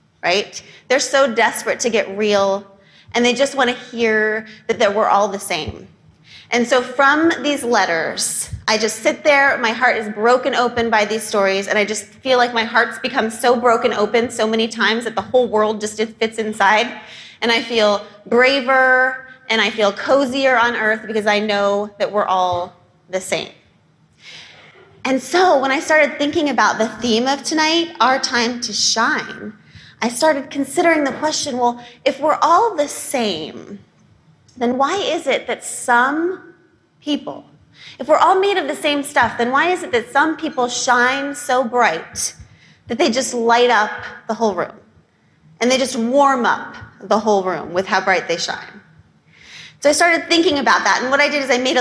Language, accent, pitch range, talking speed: English, American, 215-275 Hz, 185 wpm